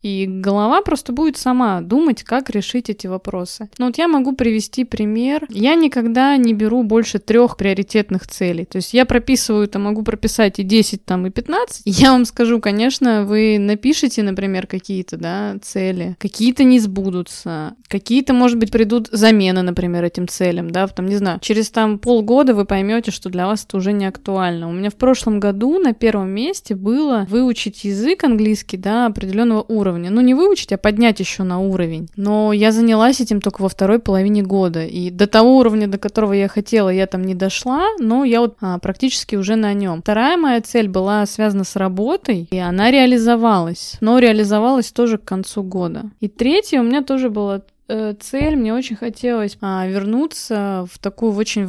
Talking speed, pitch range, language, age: 185 wpm, 195-240 Hz, Russian, 20-39